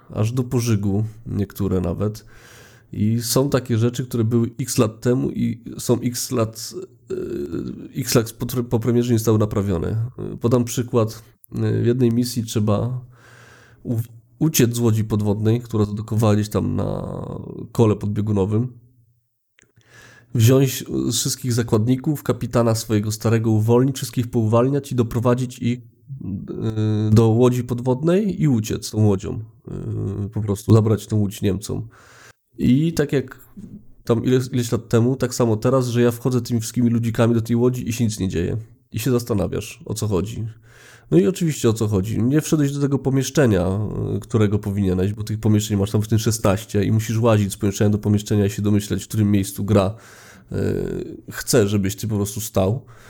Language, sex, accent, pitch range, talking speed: Polish, male, native, 105-125 Hz, 160 wpm